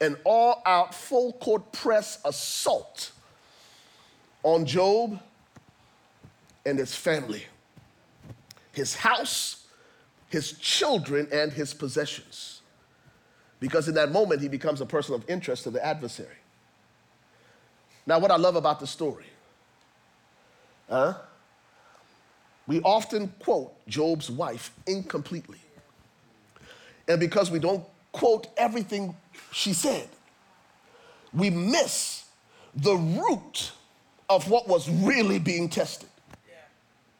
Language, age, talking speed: English, 40-59, 100 wpm